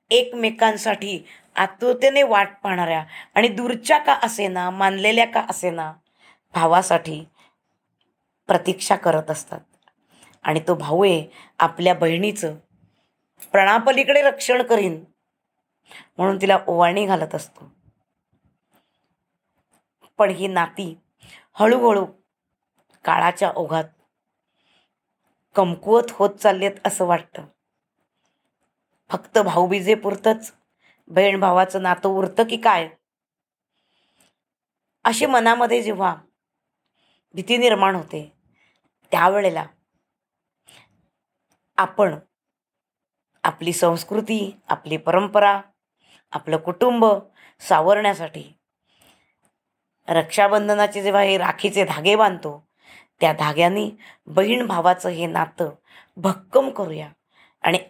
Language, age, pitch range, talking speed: Marathi, 20-39, 170-215 Hz, 80 wpm